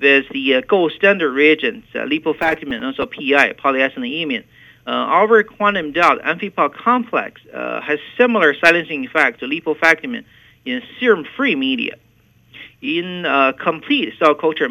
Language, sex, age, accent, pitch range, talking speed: English, male, 50-69, American, 140-205 Hz, 135 wpm